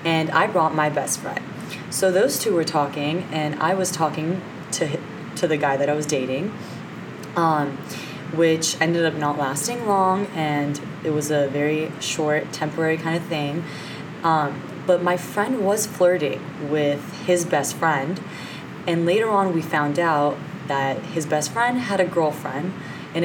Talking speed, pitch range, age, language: 165 wpm, 150-185 Hz, 20-39, English